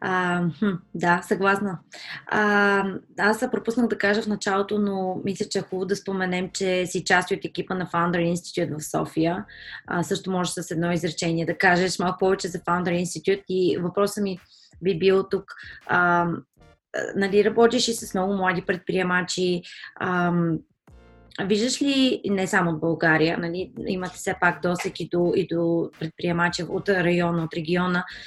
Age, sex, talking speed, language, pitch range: 20-39, female, 155 wpm, Bulgarian, 175-195 Hz